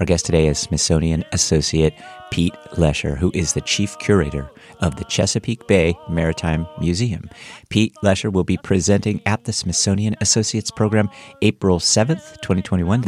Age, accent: 50-69, American